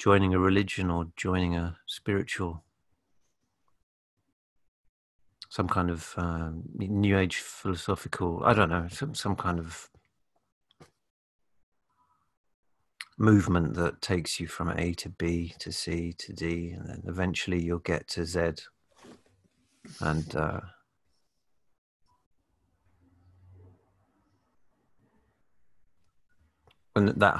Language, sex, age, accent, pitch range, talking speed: English, male, 40-59, British, 85-95 Hz, 90 wpm